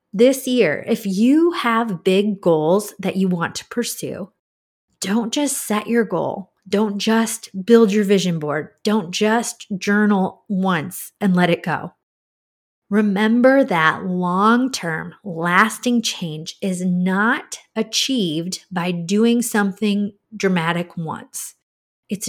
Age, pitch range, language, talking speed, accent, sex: 30-49, 175-225 Hz, English, 120 wpm, American, female